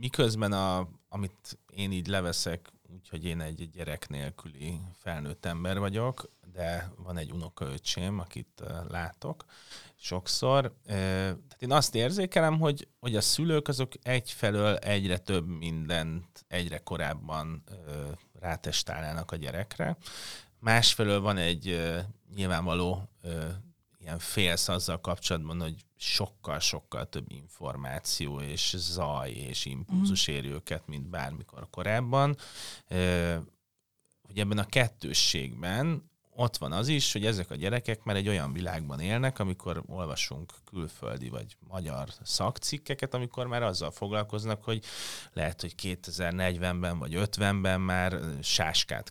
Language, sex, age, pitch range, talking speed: Hungarian, male, 30-49, 85-115 Hz, 110 wpm